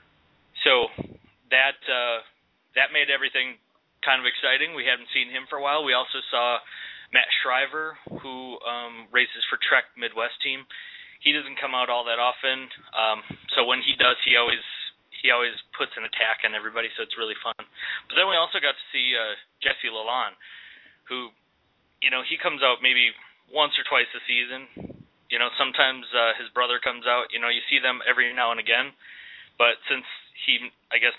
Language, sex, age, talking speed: English, male, 20-39, 185 wpm